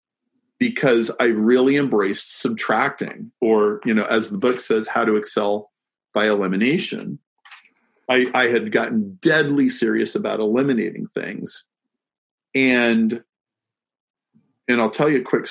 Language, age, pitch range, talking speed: English, 40-59, 110-140 Hz, 130 wpm